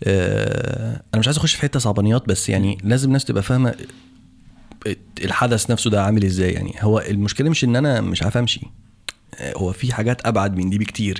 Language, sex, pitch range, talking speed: Arabic, male, 100-125 Hz, 180 wpm